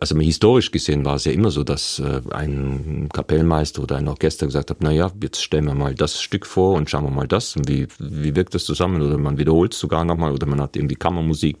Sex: male